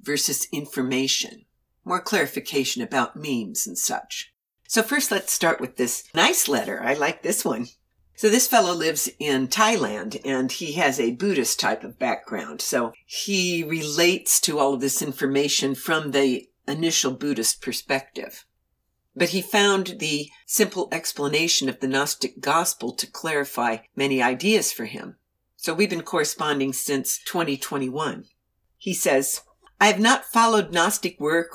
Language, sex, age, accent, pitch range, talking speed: English, female, 60-79, American, 140-215 Hz, 145 wpm